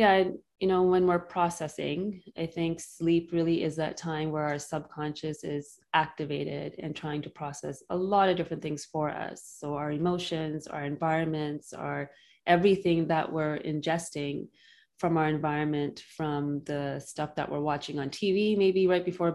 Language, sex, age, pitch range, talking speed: English, female, 20-39, 150-165 Hz, 165 wpm